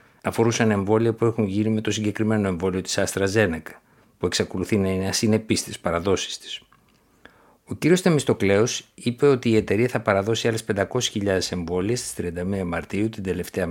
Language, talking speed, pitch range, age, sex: Greek, 160 wpm, 95-115 Hz, 60-79, male